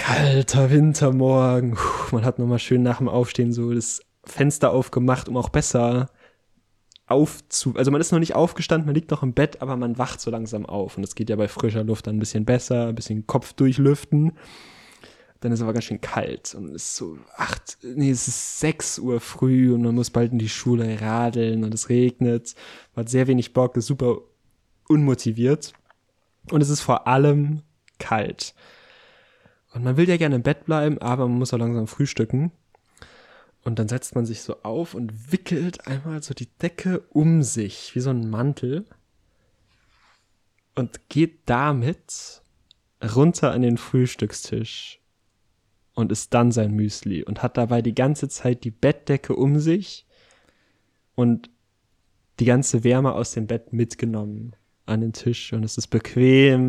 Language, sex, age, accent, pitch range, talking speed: German, male, 20-39, German, 115-140 Hz, 175 wpm